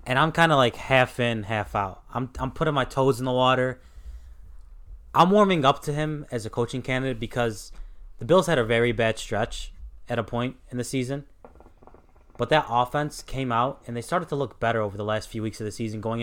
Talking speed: 220 wpm